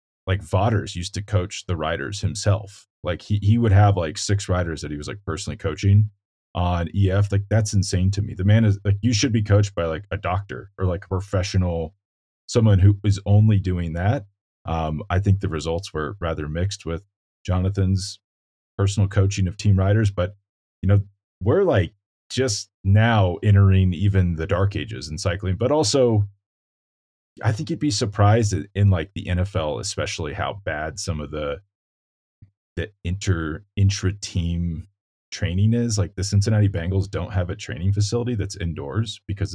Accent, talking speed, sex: American, 170 wpm, male